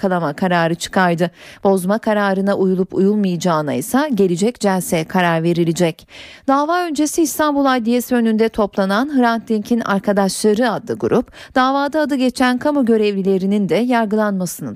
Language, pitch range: Turkish, 190-260 Hz